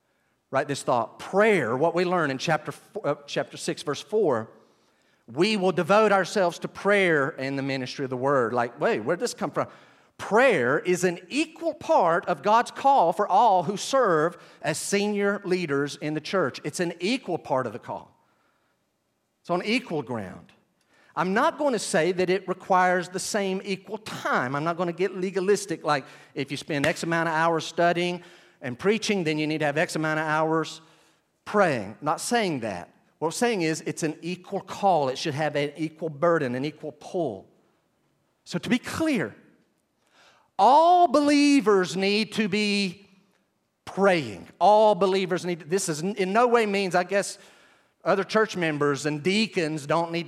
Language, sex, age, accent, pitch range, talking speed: English, male, 40-59, American, 155-200 Hz, 180 wpm